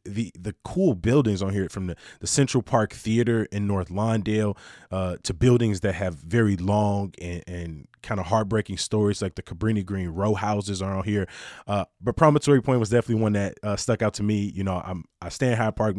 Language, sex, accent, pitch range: English, male, American, 100-120 Hz